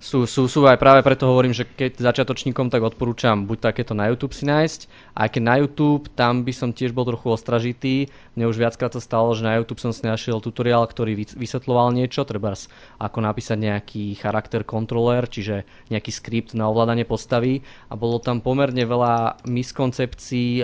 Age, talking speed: 20-39, 175 wpm